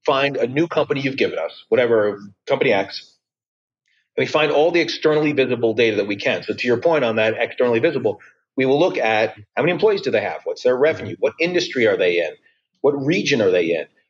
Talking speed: 220 wpm